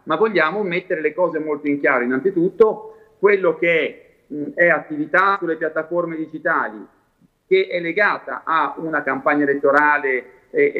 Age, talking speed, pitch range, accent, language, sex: 40-59, 140 wpm, 160-215 Hz, native, Italian, male